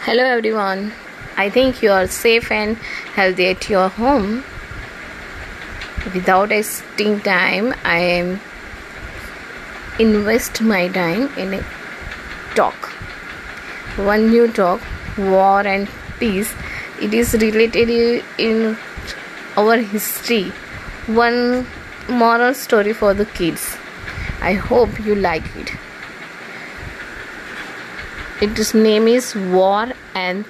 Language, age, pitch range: English, 20-39, 195-230 Hz